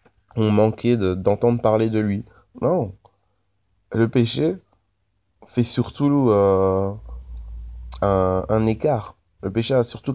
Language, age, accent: French, 20-39, French